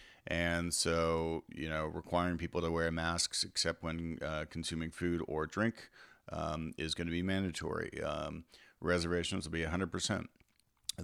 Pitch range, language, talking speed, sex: 85-95 Hz, English, 145 wpm, male